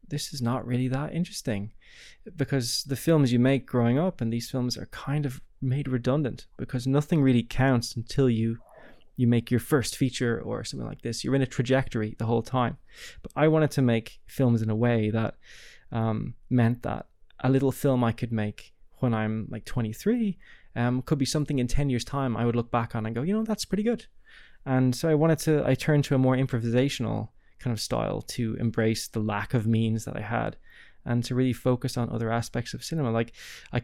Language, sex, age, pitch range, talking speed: English, male, 20-39, 115-130 Hz, 215 wpm